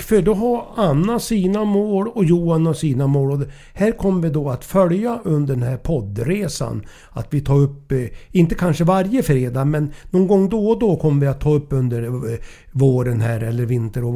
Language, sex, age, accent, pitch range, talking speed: English, male, 60-79, Swedish, 125-175 Hz, 190 wpm